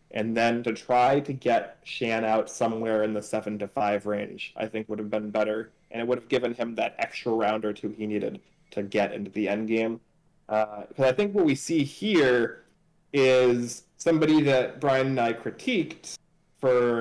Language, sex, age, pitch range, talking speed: English, male, 20-39, 105-120 Hz, 200 wpm